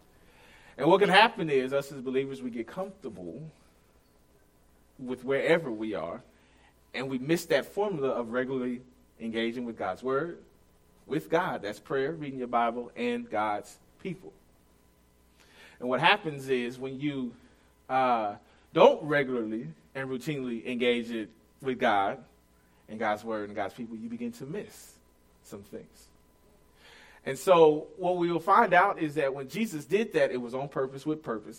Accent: American